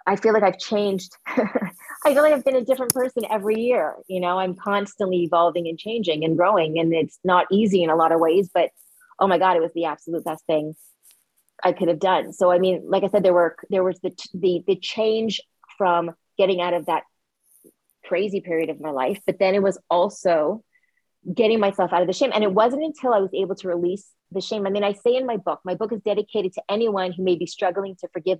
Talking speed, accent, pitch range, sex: 235 wpm, American, 180-220 Hz, female